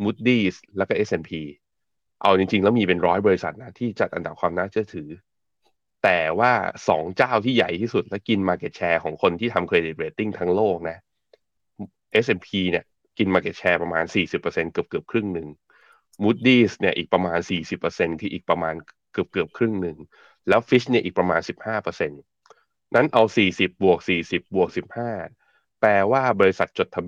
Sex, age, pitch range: male, 20-39, 90-110 Hz